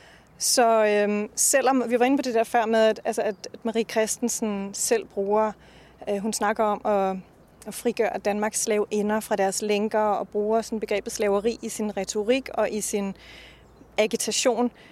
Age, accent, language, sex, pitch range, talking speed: 30-49, native, Danish, female, 215-250 Hz, 170 wpm